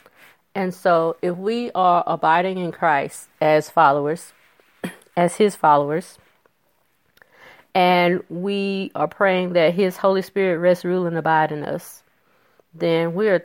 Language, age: English, 40-59